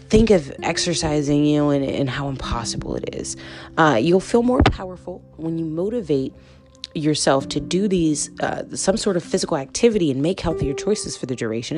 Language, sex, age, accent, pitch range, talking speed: English, female, 30-49, American, 140-195 Hz, 185 wpm